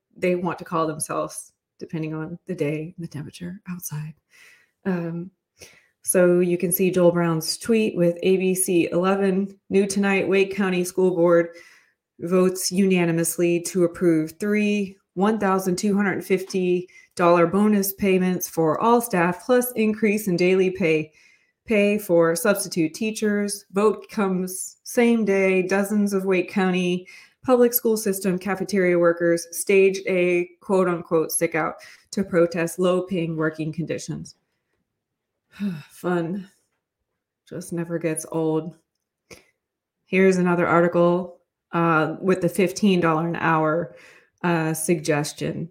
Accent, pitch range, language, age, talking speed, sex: American, 170-195 Hz, English, 30-49, 115 wpm, female